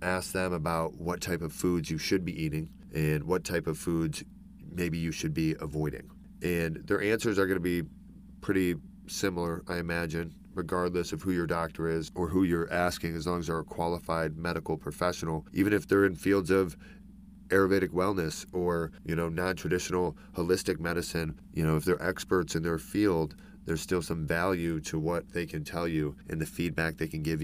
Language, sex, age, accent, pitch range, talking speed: English, male, 30-49, American, 80-90 Hz, 190 wpm